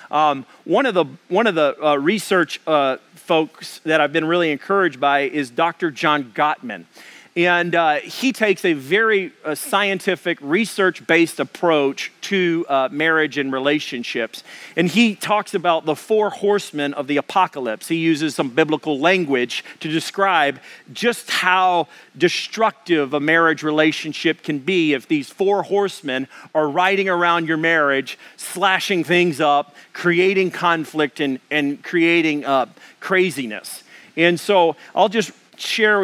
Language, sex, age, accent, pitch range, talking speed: English, male, 40-59, American, 150-185 Hz, 140 wpm